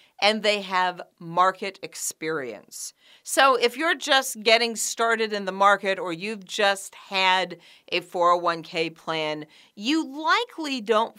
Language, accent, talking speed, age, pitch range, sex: English, American, 130 wpm, 50-69, 175-245 Hz, female